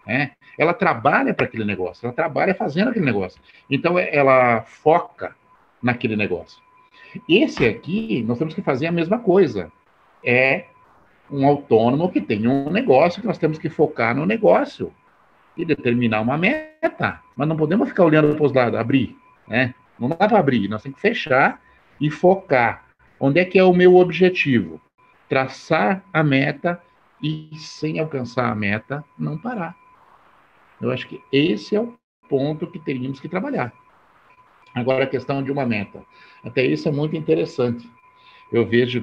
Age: 50-69